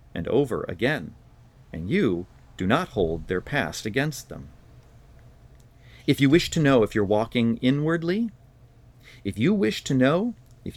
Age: 40-59